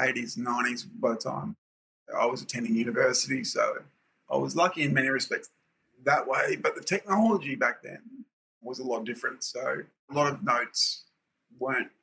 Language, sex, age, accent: English, male, 30-49, Australian